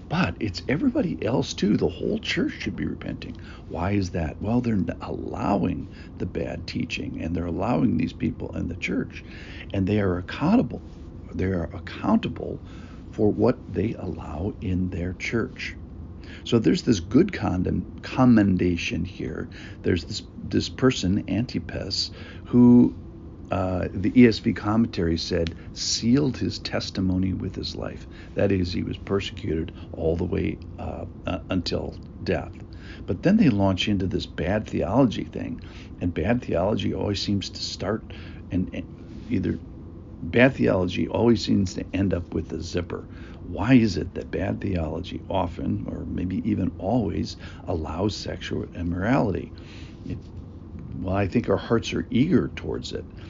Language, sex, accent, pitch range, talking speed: English, male, American, 85-105 Hz, 145 wpm